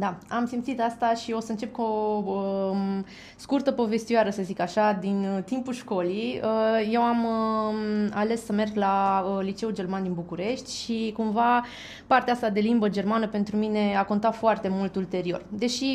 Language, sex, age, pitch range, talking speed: Romanian, female, 20-39, 195-250 Hz, 180 wpm